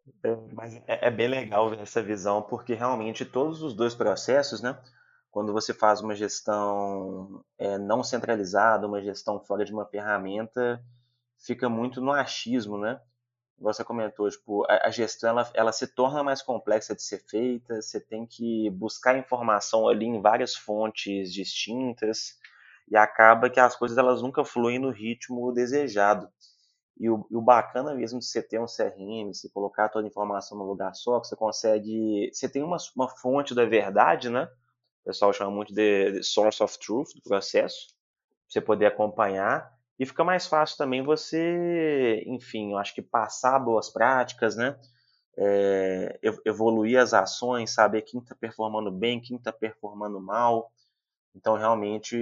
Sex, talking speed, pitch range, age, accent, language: male, 160 wpm, 105-125 Hz, 20-39, Brazilian, Portuguese